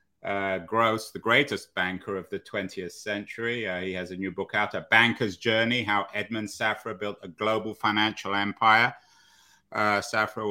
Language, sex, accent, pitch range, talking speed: English, male, British, 100-115 Hz, 165 wpm